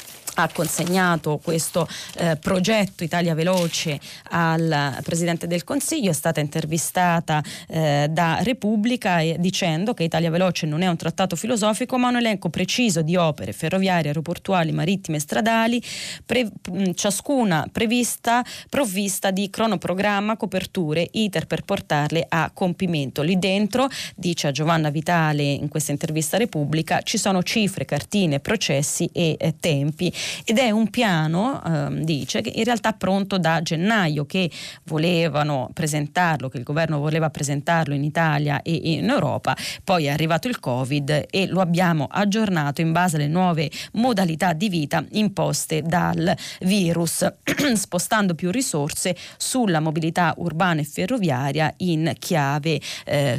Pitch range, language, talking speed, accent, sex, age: 155-195 Hz, Italian, 140 wpm, native, female, 20-39